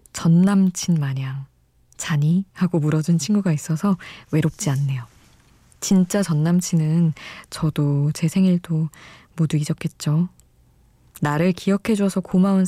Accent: native